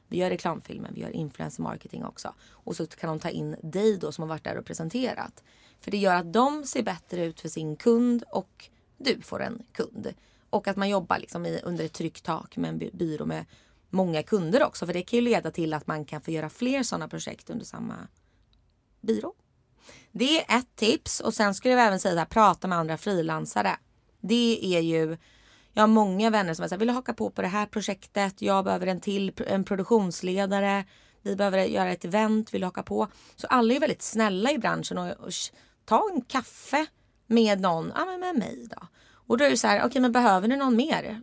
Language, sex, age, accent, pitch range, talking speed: English, female, 20-39, Swedish, 170-235 Hz, 210 wpm